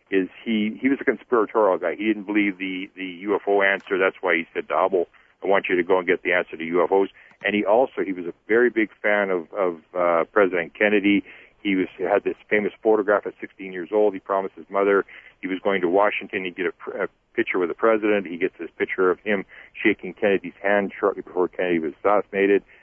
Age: 40-59